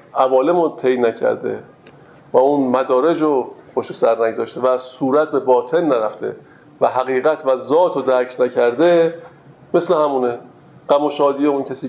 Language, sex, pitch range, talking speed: Persian, male, 130-160 Hz, 135 wpm